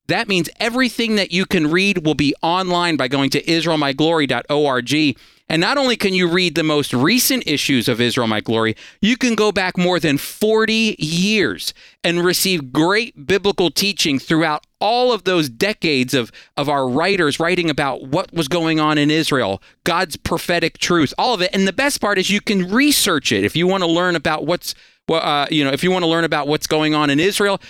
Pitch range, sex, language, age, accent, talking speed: 140-190 Hz, male, English, 40-59, American, 205 wpm